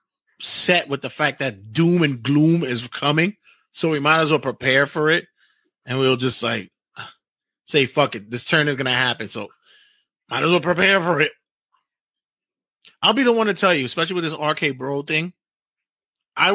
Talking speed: 190 wpm